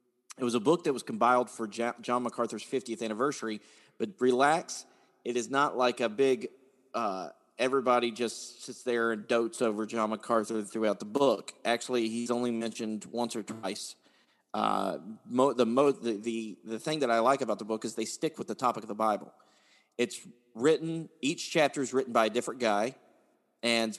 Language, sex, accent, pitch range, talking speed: English, male, American, 110-135 Hz, 175 wpm